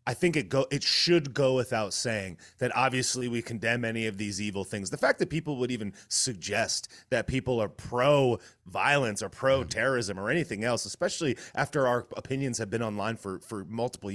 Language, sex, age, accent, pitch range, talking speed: English, male, 30-49, American, 110-140 Hz, 195 wpm